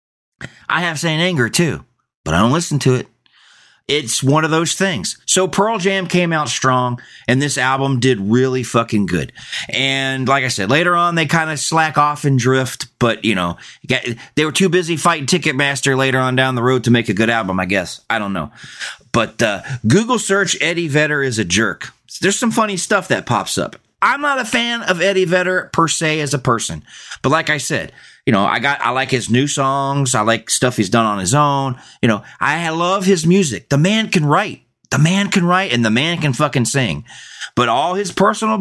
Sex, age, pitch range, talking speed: male, 30-49, 125-175 Hz, 215 wpm